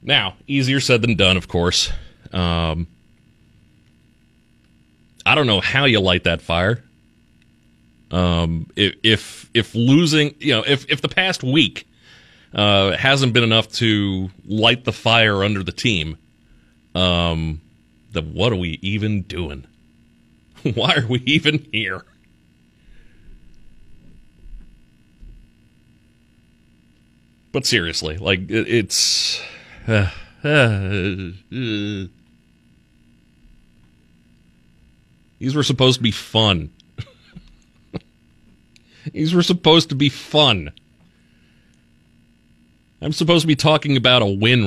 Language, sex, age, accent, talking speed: English, male, 30-49, American, 100 wpm